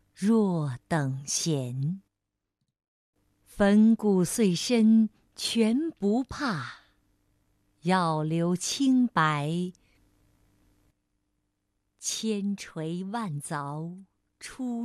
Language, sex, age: Chinese, female, 50-69